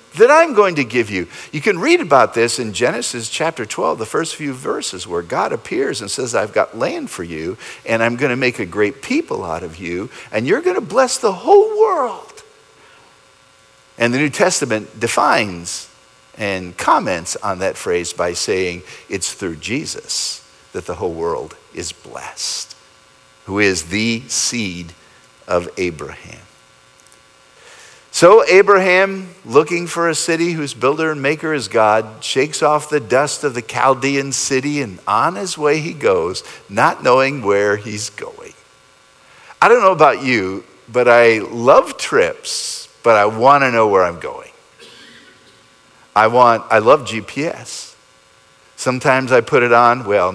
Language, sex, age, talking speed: English, male, 50-69, 155 wpm